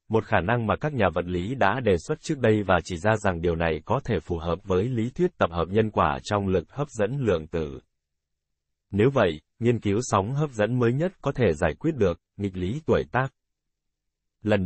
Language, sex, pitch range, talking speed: Vietnamese, male, 90-120 Hz, 225 wpm